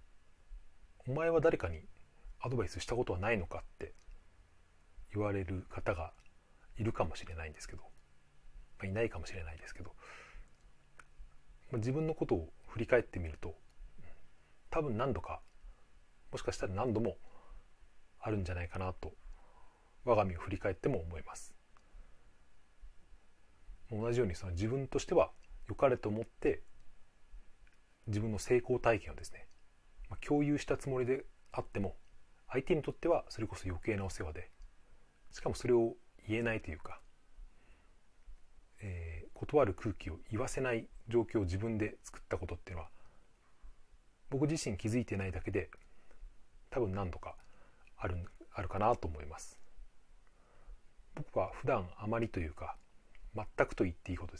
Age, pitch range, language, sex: 30-49, 80-110 Hz, Japanese, male